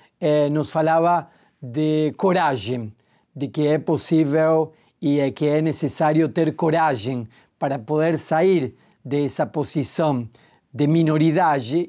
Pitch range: 140-165 Hz